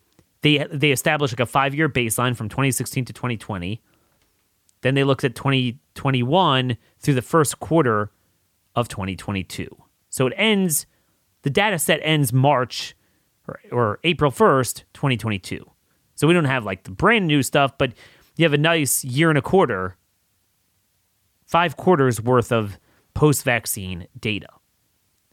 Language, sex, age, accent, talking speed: English, male, 30-49, American, 140 wpm